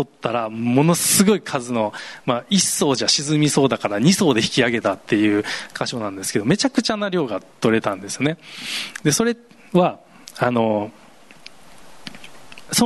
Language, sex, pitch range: Japanese, male, 115-175 Hz